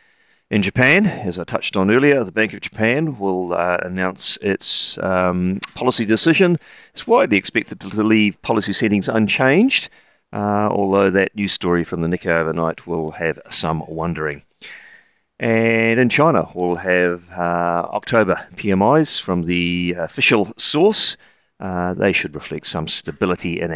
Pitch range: 85-110 Hz